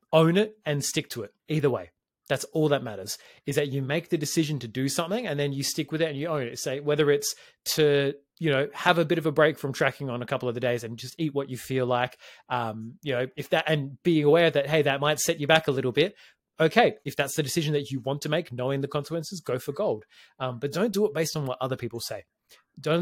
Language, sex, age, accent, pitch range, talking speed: English, male, 20-39, Australian, 125-155 Hz, 270 wpm